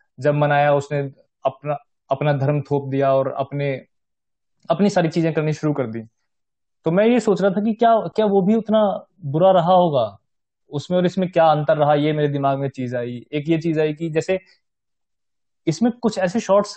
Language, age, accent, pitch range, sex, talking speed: Hindi, 20-39, native, 130-165 Hz, male, 195 wpm